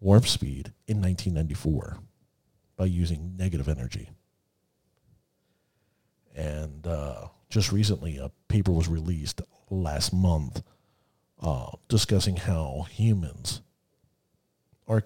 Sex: male